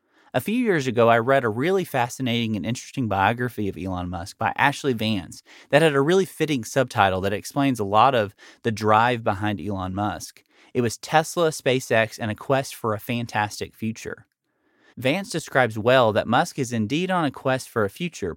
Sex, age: male, 30-49